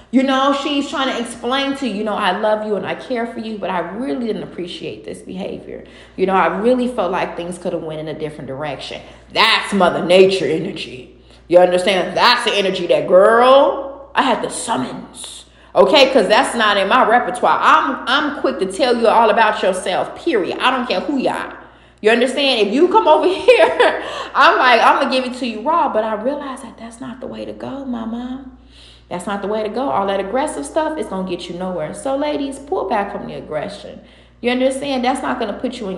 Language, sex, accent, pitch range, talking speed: English, female, American, 185-255 Hz, 230 wpm